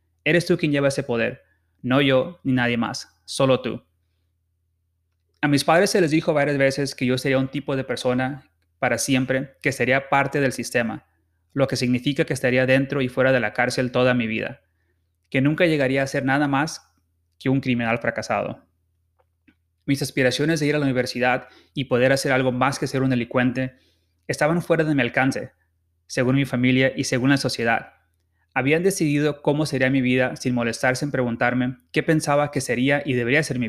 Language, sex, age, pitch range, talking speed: Spanish, male, 30-49, 110-140 Hz, 190 wpm